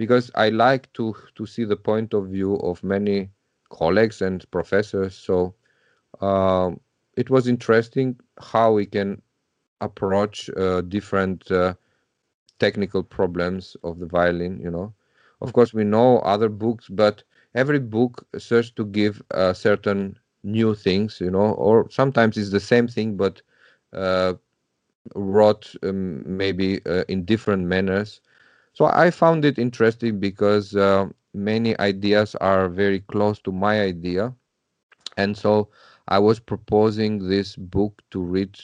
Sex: male